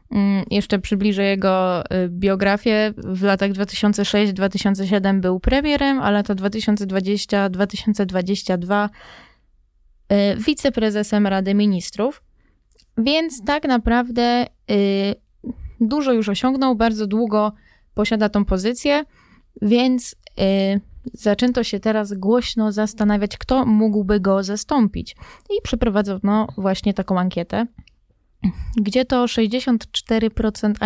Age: 20-39